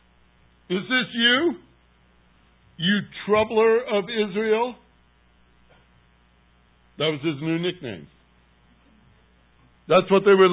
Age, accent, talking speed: 60-79, American, 90 wpm